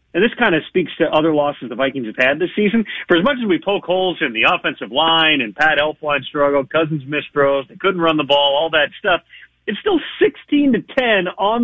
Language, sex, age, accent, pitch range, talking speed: English, male, 40-59, American, 135-185 Hz, 230 wpm